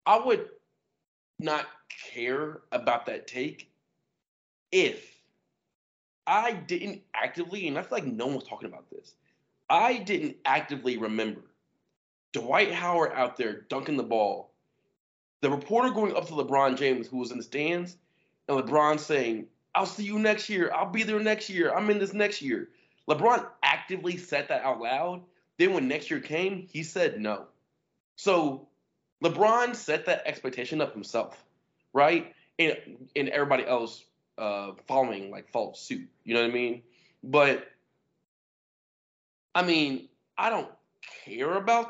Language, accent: English, American